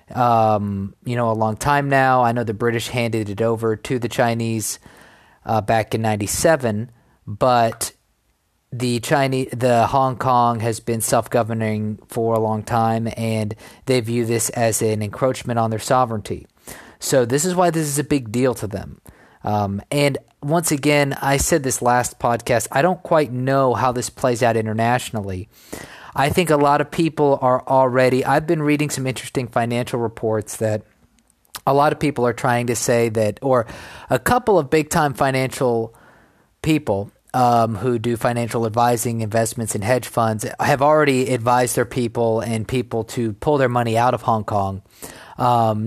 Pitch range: 110-130 Hz